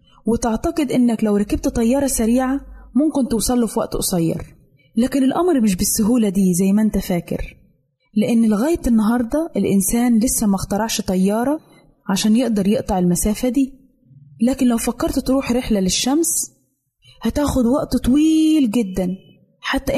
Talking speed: 130 wpm